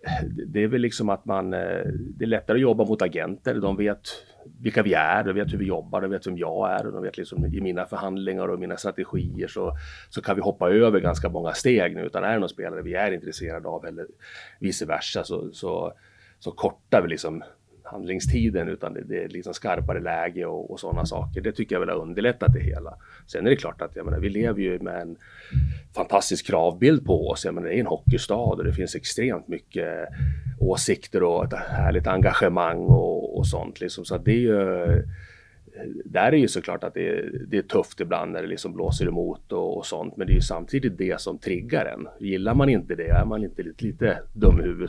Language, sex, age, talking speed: Swedish, male, 30-49, 220 wpm